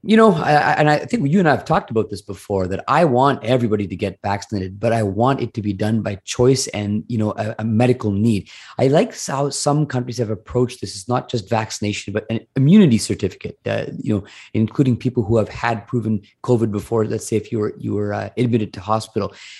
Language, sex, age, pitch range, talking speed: English, male, 30-49, 110-140 Hz, 225 wpm